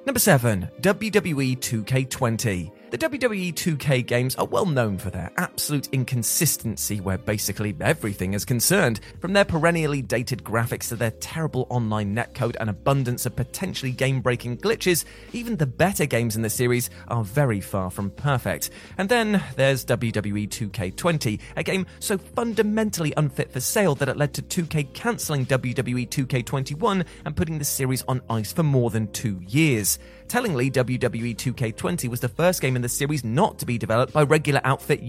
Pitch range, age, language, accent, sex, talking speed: 115-155 Hz, 30-49, English, British, male, 165 wpm